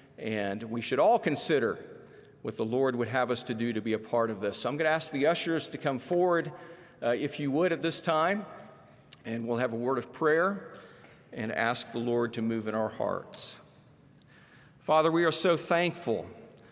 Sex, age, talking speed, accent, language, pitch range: male, 50-69, 205 wpm, American, English, 120-155 Hz